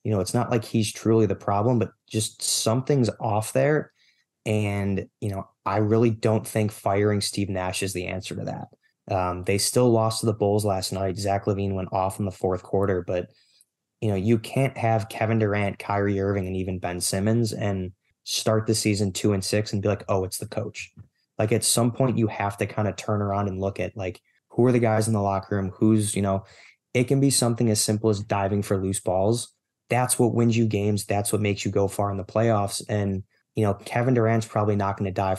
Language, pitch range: English, 100-115 Hz